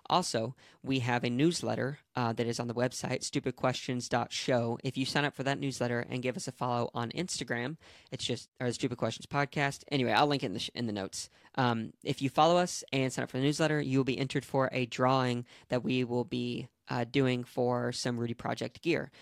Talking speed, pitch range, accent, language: 215 wpm, 120-135 Hz, American, English